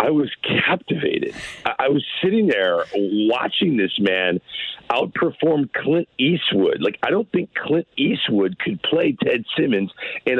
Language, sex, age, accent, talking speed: English, male, 50-69, American, 140 wpm